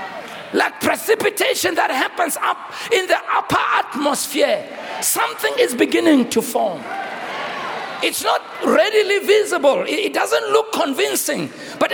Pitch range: 260-335 Hz